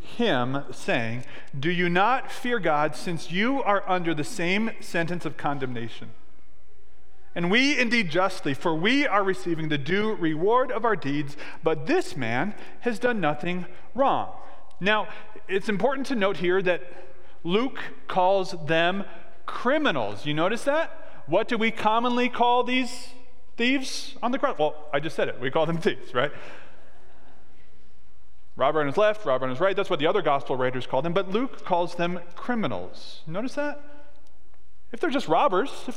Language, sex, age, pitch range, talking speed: English, male, 40-59, 165-240 Hz, 165 wpm